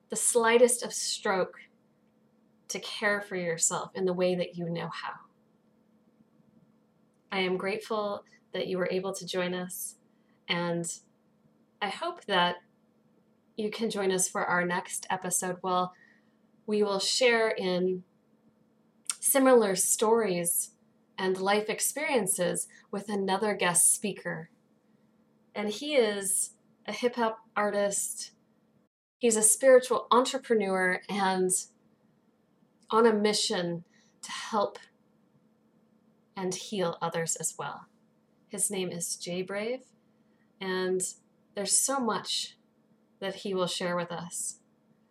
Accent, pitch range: American, 185-230 Hz